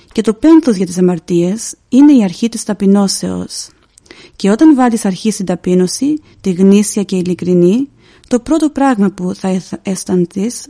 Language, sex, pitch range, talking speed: Greek, female, 190-235 Hz, 150 wpm